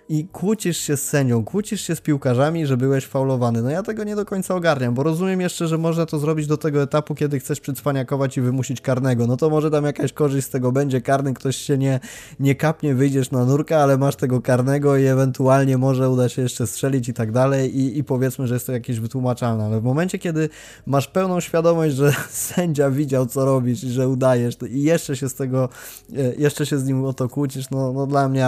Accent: native